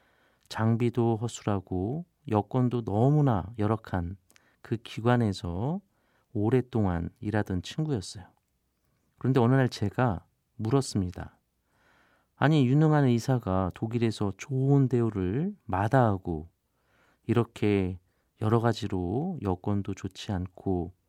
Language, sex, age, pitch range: Korean, male, 40-59, 95-130 Hz